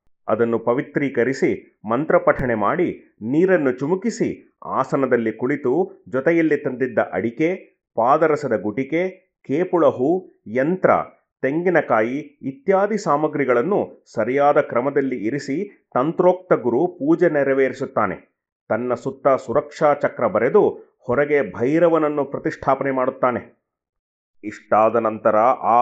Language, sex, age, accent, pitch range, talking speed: Kannada, male, 30-49, native, 125-160 Hz, 90 wpm